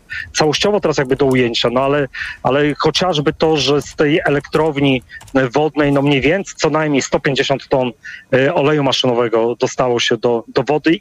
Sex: male